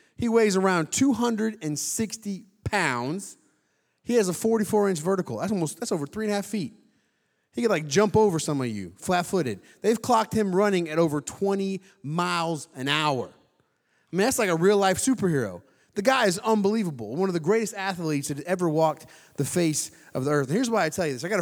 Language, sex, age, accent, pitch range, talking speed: English, male, 30-49, American, 150-200 Hz, 200 wpm